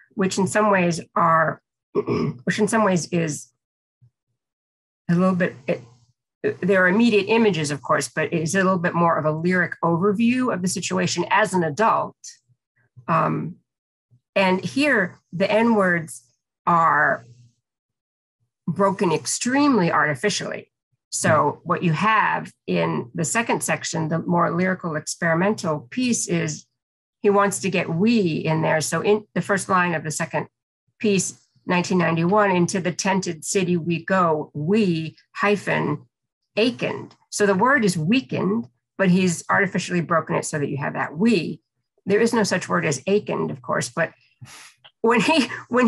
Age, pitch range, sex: 50-69, 150-205 Hz, female